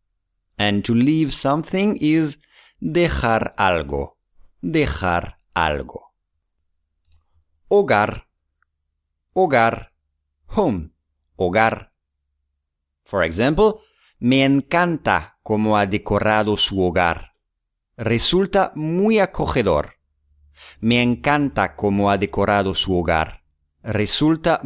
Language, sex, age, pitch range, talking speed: English, male, 50-69, 80-125 Hz, 80 wpm